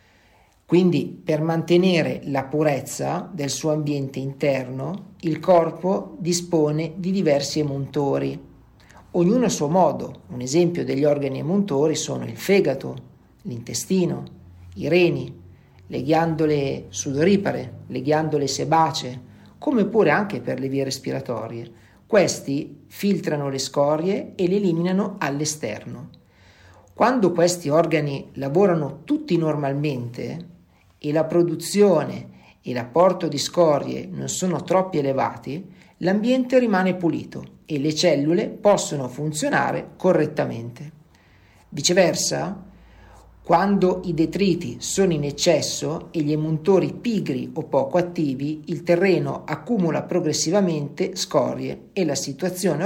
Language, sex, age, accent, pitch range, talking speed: Italian, male, 50-69, native, 135-180 Hz, 110 wpm